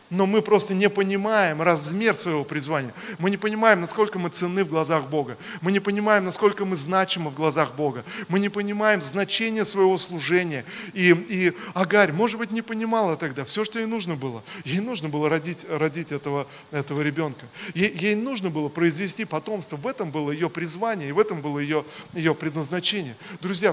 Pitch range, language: 150-200 Hz, Russian